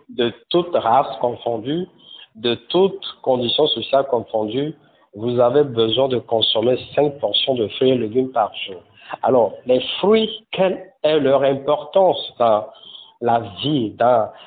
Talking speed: 135 wpm